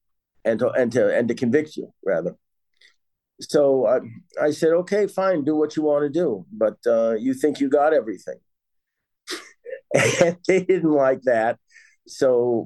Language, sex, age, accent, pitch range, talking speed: English, male, 50-69, American, 120-155 Hz, 160 wpm